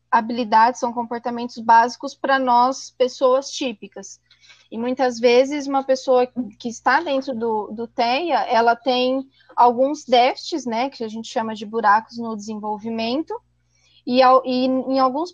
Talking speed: 145 wpm